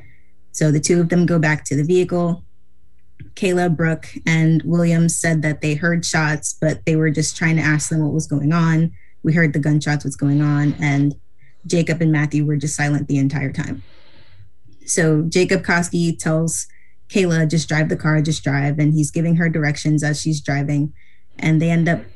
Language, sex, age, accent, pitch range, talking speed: English, female, 20-39, American, 150-165 Hz, 190 wpm